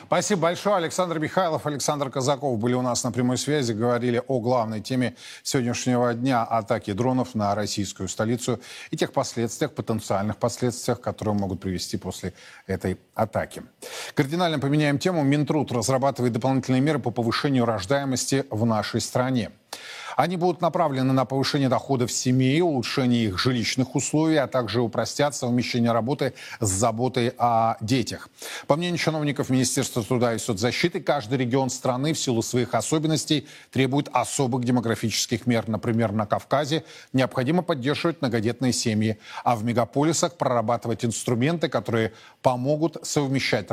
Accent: native